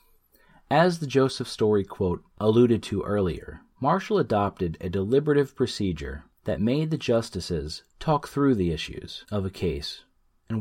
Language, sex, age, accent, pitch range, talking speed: English, male, 30-49, American, 85-120 Hz, 140 wpm